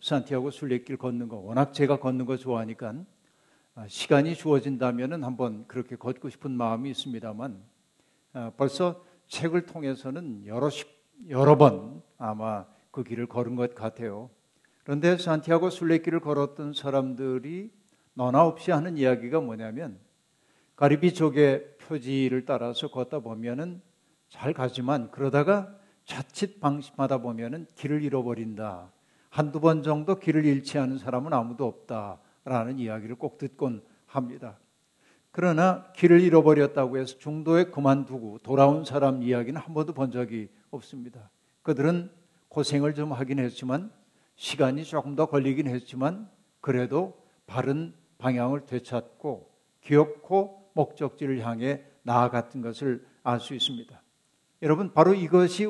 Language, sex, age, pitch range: Korean, male, 50-69, 125-155 Hz